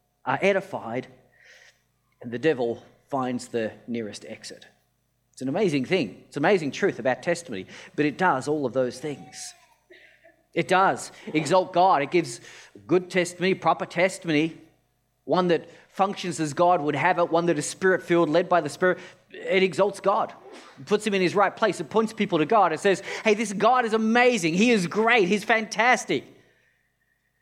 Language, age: English, 30-49